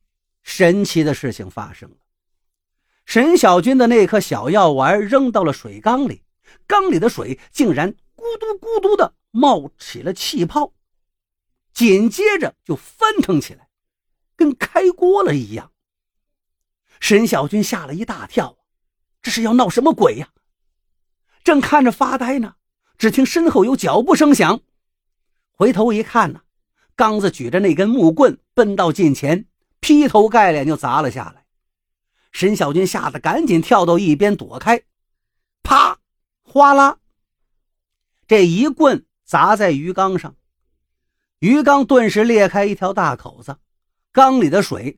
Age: 50-69